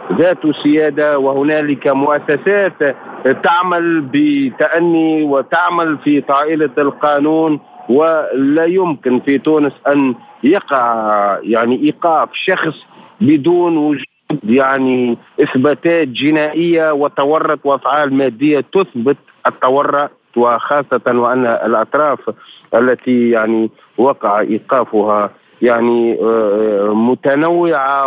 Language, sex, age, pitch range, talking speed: Arabic, male, 50-69, 135-170 Hz, 80 wpm